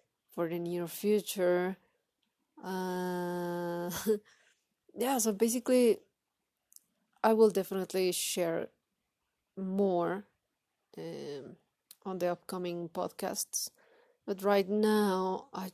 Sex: female